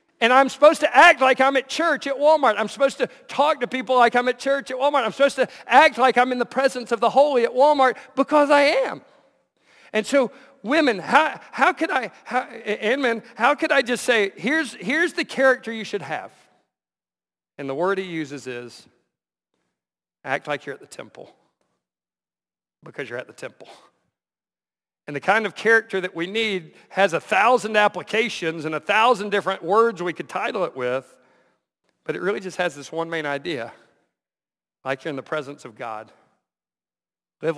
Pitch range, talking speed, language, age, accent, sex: 160-255 Hz, 190 wpm, English, 50-69, American, male